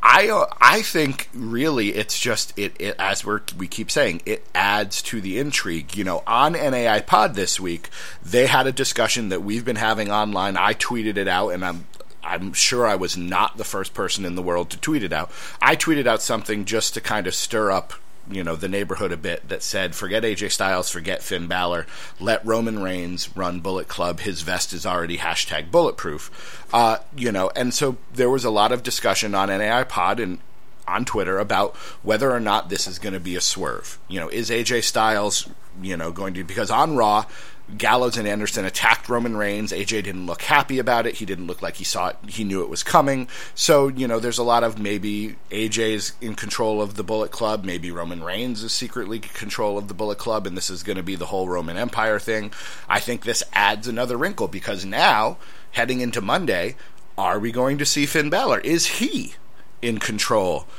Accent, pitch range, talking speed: American, 95-120 Hz, 210 wpm